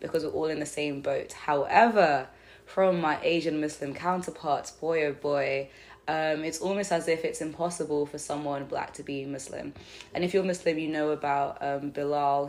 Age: 20-39